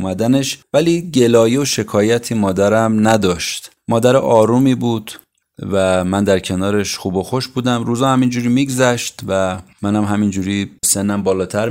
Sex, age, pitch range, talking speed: male, 30-49, 95-125 Hz, 130 wpm